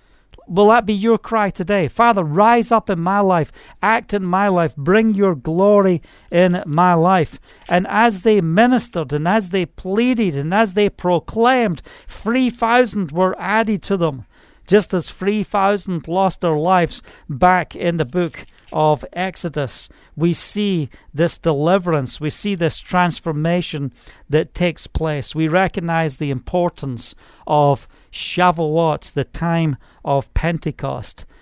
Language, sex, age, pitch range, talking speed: English, male, 40-59, 145-195 Hz, 140 wpm